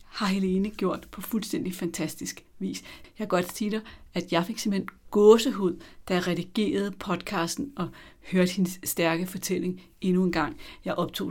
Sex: female